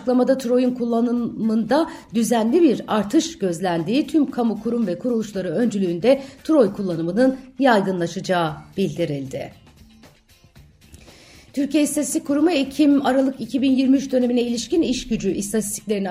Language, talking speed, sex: Turkish, 100 wpm, female